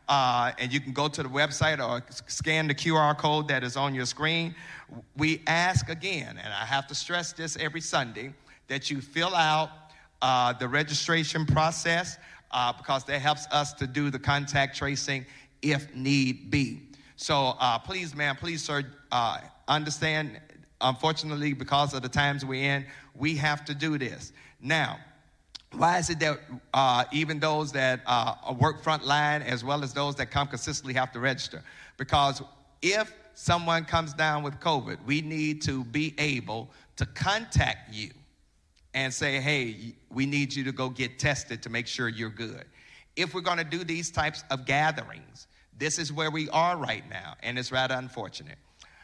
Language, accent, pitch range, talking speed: English, American, 130-155 Hz, 175 wpm